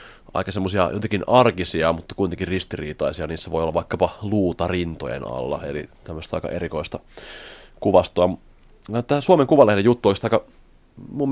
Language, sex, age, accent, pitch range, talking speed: Finnish, male, 30-49, native, 80-100 Hz, 135 wpm